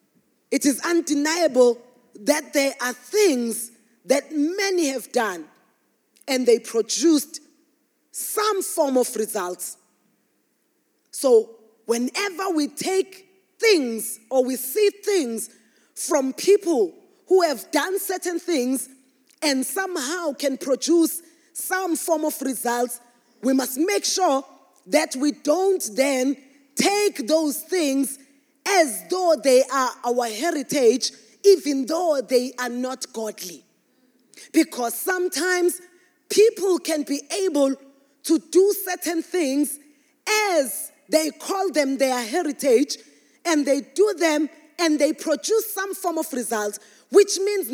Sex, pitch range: female, 260-355 Hz